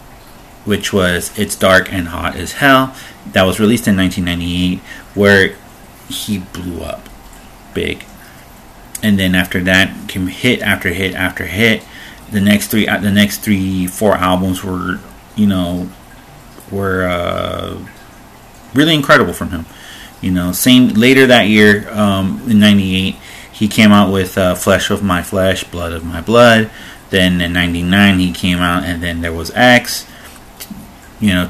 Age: 30-49